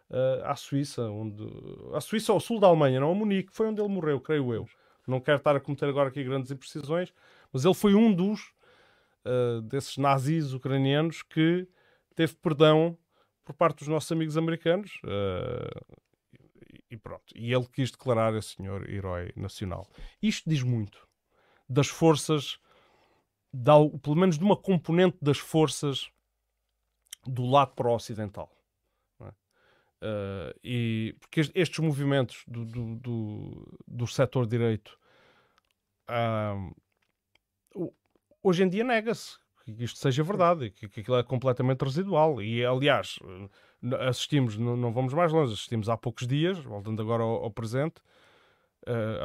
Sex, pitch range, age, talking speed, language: male, 115-155 Hz, 30-49, 140 wpm, Portuguese